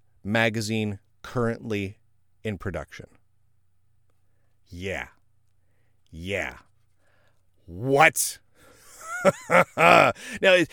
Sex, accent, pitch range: male, American, 105-155 Hz